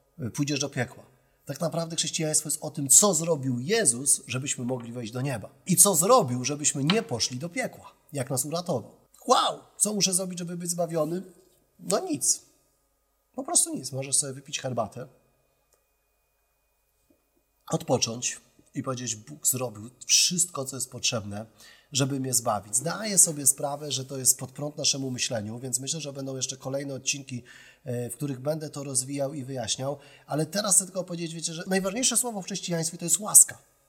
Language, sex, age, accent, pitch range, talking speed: Polish, male, 30-49, native, 125-165 Hz, 165 wpm